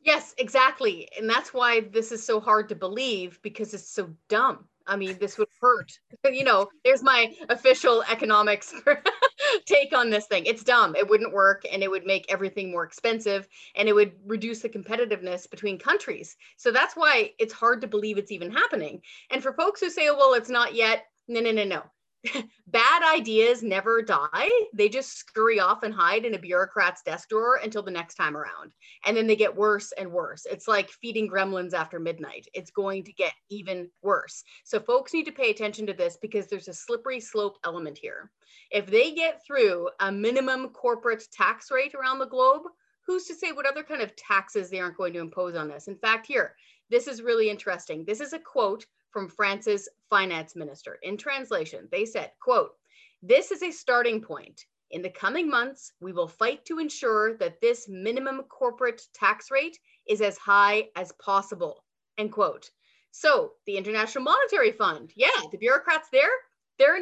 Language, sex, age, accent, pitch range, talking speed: English, female, 30-49, American, 200-290 Hz, 190 wpm